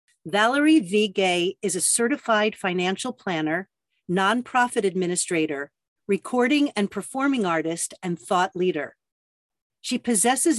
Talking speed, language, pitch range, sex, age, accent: 110 wpm, English, 185-245 Hz, female, 50-69, American